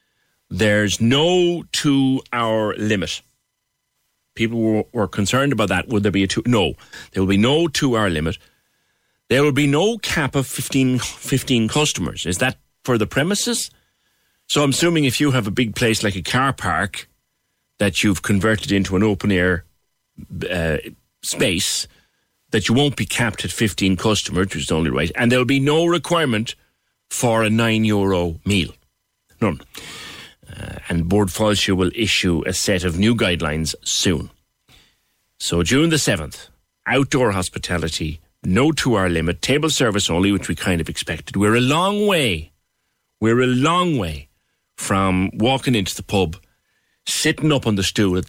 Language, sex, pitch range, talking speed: English, male, 90-125 Hz, 165 wpm